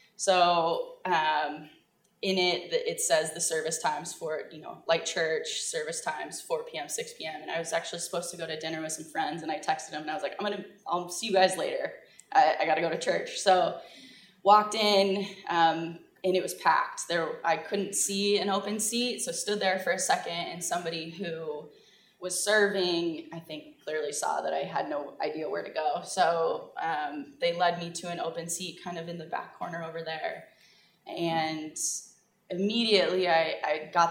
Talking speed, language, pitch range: 200 wpm, English, 165-205 Hz